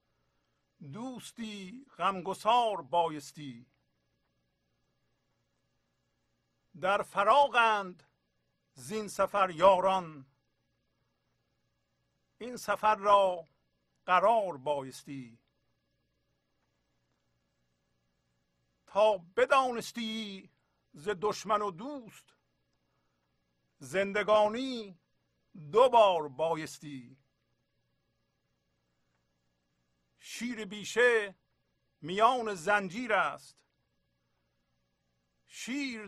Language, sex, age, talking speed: English, male, 50-69, 45 wpm